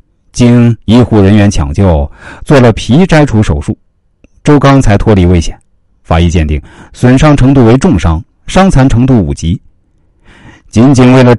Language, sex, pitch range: Chinese, male, 90-130 Hz